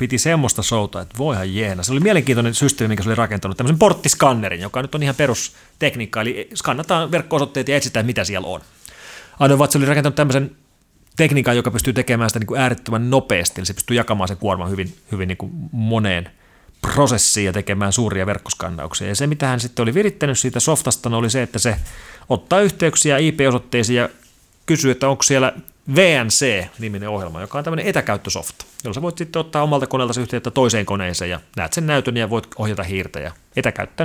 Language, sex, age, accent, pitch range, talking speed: Finnish, male, 30-49, native, 105-150 Hz, 185 wpm